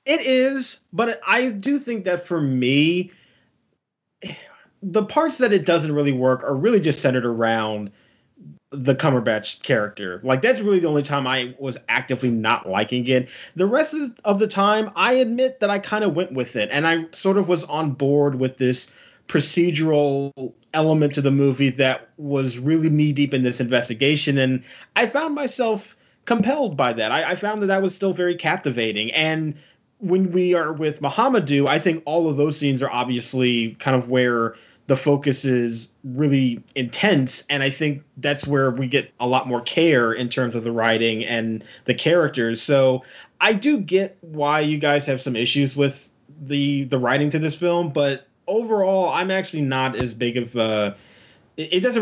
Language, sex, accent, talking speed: English, male, American, 180 wpm